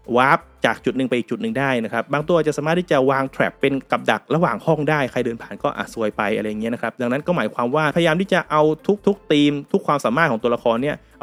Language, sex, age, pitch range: Thai, male, 20-39, 125-160 Hz